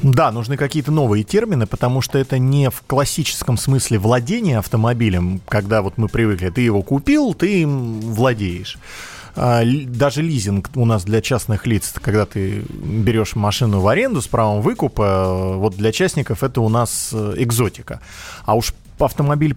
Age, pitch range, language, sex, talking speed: 30-49, 110-140 Hz, Russian, male, 155 wpm